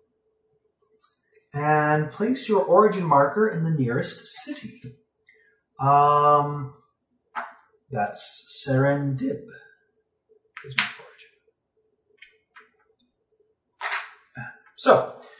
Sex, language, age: male, English, 30-49